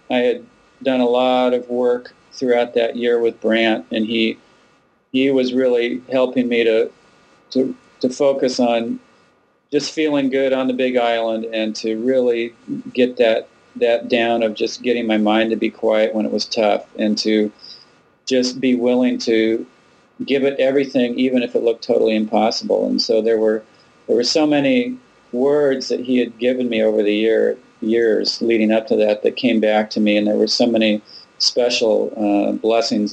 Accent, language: American, English